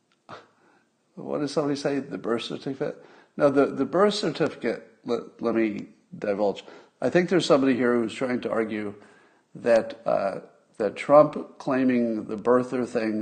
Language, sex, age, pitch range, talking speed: English, male, 50-69, 115-145 Hz, 150 wpm